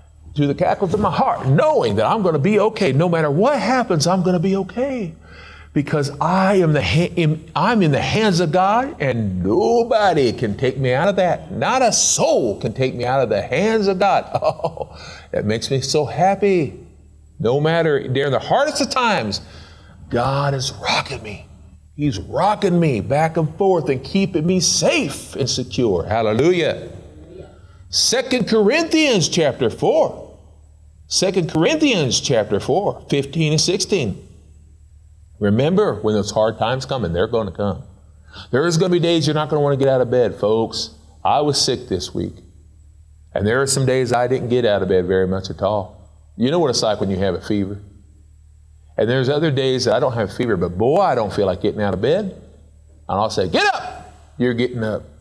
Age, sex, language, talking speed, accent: 50-69, male, English, 195 wpm, American